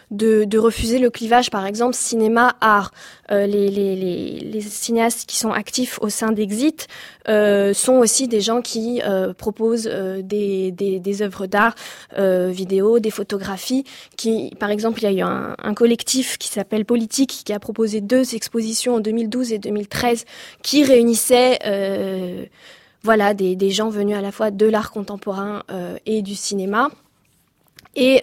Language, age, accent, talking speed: French, 20-39, French, 150 wpm